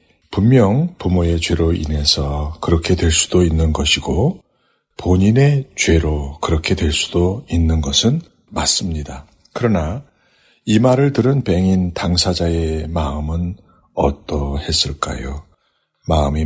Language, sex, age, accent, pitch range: Korean, male, 60-79, native, 80-100 Hz